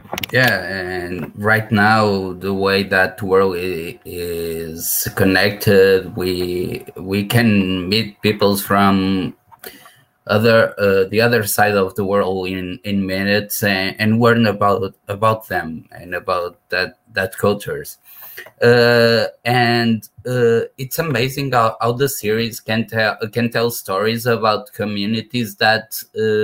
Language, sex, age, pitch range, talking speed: Portuguese, male, 20-39, 100-115 Hz, 125 wpm